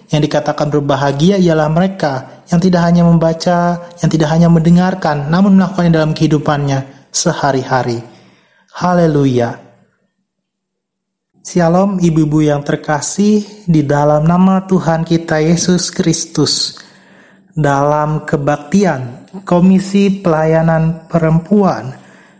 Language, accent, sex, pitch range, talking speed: Indonesian, native, male, 150-180 Hz, 95 wpm